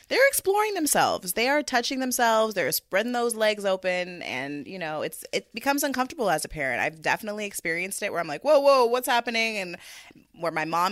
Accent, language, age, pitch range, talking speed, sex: American, English, 20-39, 160-220 Hz, 205 wpm, female